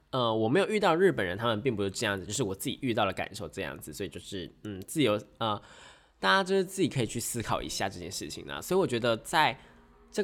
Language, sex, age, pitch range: Chinese, male, 20-39, 105-155 Hz